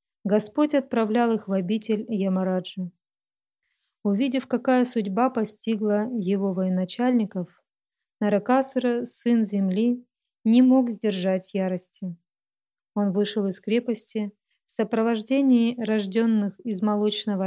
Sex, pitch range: female, 200-240 Hz